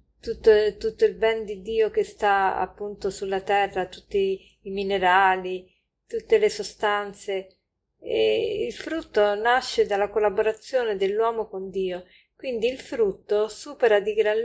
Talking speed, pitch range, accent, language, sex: 135 wpm, 195-295 Hz, native, Italian, female